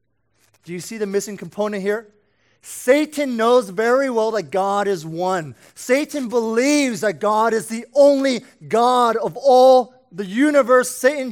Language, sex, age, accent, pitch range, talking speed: English, male, 20-39, American, 205-260 Hz, 150 wpm